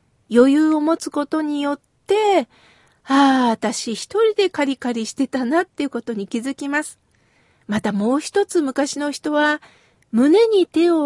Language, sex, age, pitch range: Japanese, female, 40-59, 225-315 Hz